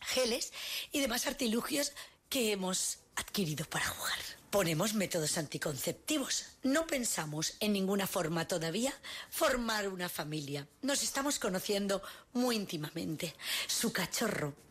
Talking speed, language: 115 wpm, Spanish